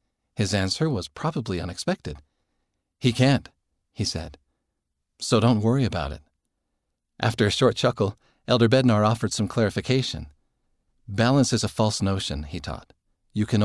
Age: 40-59